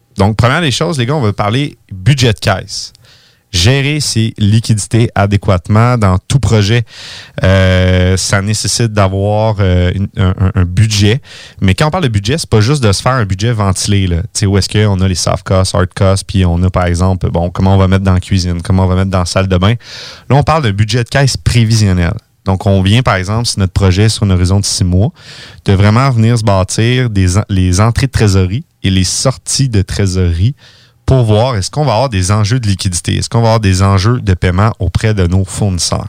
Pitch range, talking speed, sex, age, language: 95-115 Hz, 225 wpm, male, 30-49, French